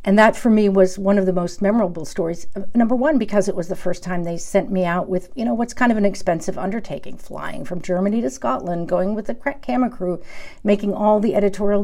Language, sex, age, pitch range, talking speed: English, female, 50-69, 185-230 Hz, 235 wpm